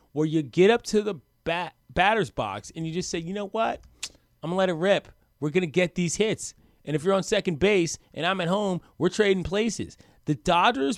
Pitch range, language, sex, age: 140-195 Hz, English, male, 30-49